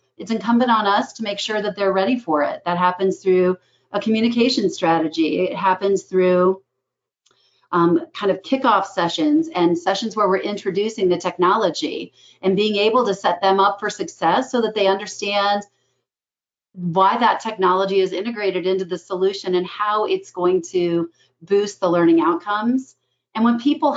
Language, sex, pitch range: English, female, 180-205 Hz